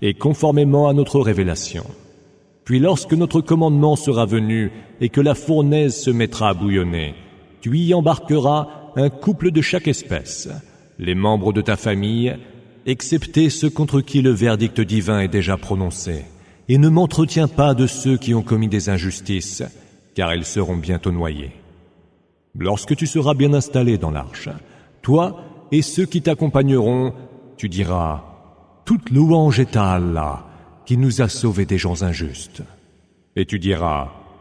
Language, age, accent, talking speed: English, 40-59, French, 150 wpm